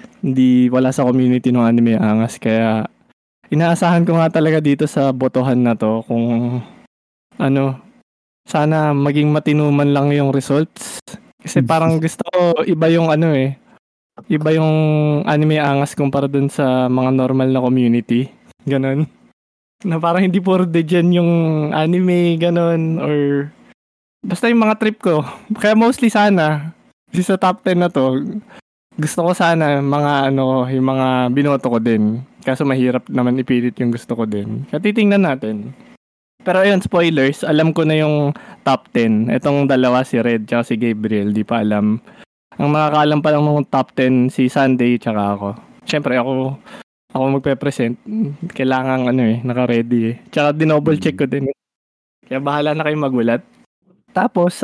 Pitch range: 125-160 Hz